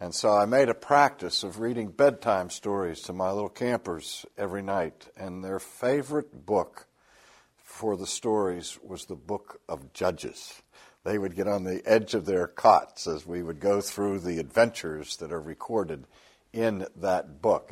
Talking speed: 170 wpm